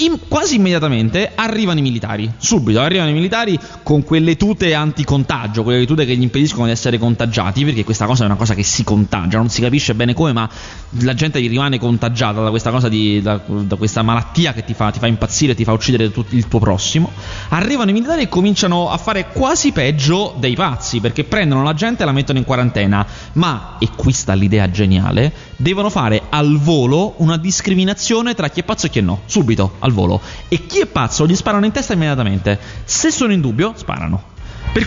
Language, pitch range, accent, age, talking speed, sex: Italian, 115-170 Hz, native, 20-39, 205 wpm, male